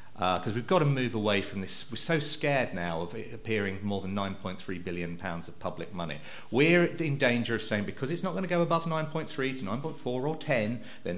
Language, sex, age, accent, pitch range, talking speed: English, male, 40-59, British, 100-130 Hz, 220 wpm